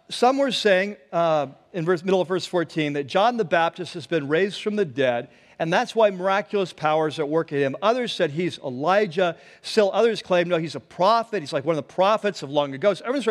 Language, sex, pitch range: English, male, 155-200 Hz